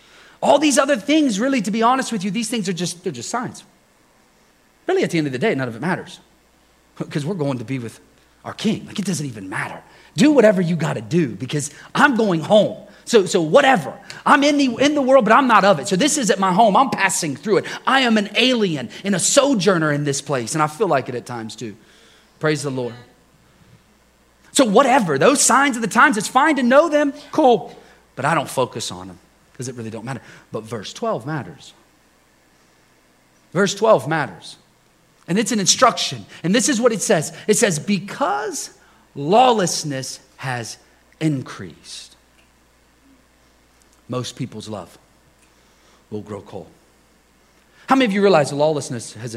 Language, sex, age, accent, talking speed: English, male, 30-49, American, 190 wpm